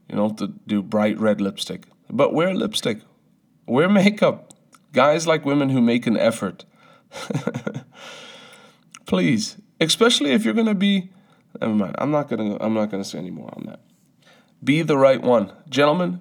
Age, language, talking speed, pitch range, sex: 30-49, English, 155 wpm, 110-180 Hz, male